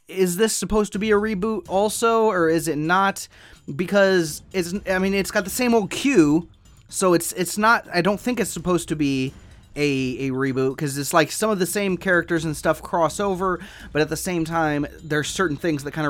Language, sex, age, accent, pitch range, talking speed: English, male, 30-49, American, 145-195 Hz, 210 wpm